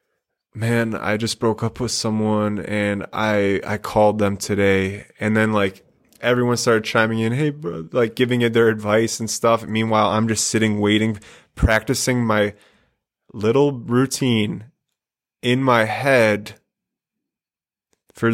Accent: American